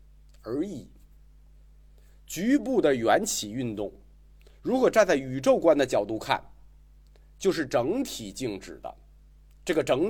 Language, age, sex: Chinese, 50-69, male